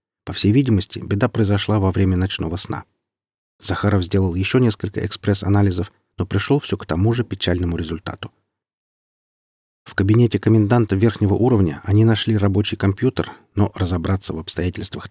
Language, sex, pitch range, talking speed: Russian, male, 95-115 Hz, 140 wpm